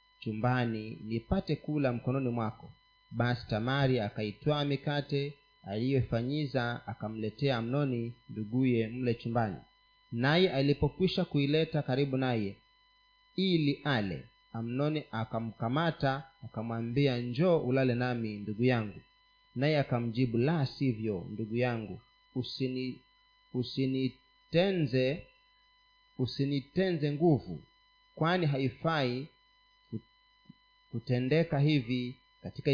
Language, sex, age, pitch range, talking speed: Swahili, male, 30-49, 120-170 Hz, 80 wpm